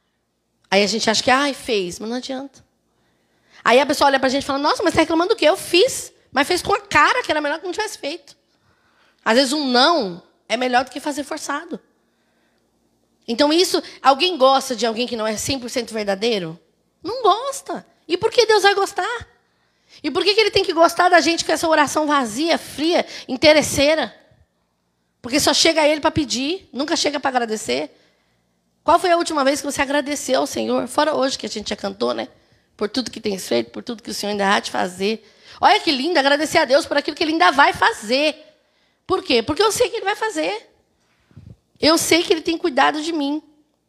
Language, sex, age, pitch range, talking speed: Portuguese, female, 10-29, 220-320 Hz, 215 wpm